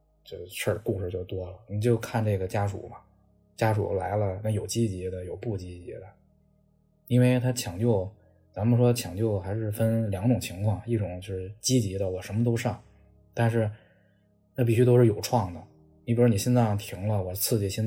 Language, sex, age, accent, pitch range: Chinese, male, 20-39, native, 100-120 Hz